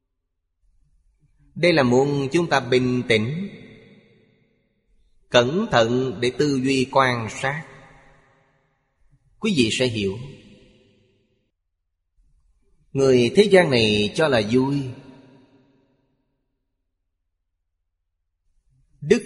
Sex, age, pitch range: male, 30-49, 110-145 Hz